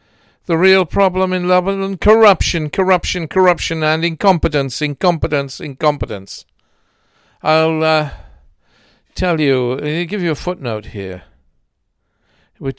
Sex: male